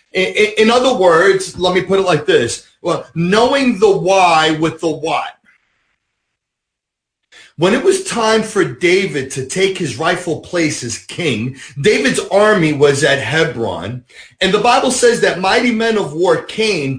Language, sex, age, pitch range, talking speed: English, male, 40-59, 150-200 Hz, 155 wpm